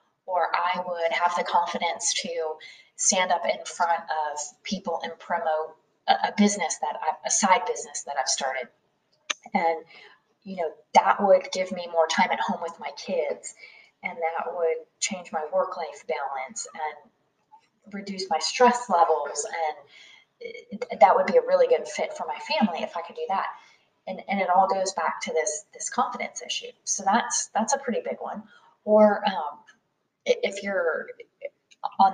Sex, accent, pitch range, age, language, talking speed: female, American, 165-240 Hz, 20-39, English, 170 wpm